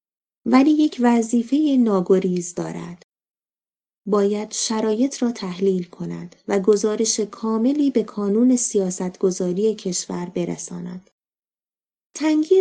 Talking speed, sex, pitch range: 95 wpm, female, 195-250 Hz